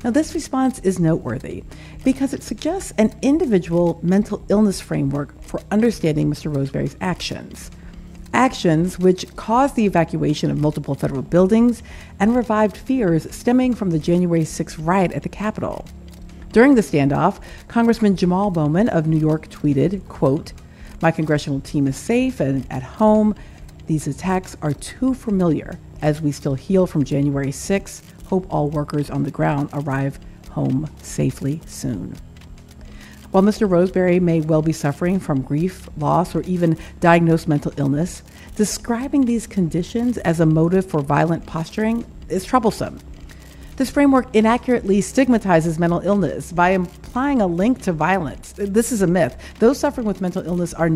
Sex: female